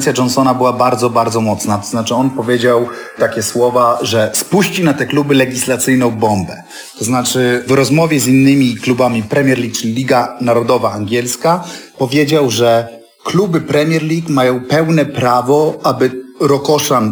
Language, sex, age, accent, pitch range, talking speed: Polish, male, 40-59, native, 120-145 Hz, 145 wpm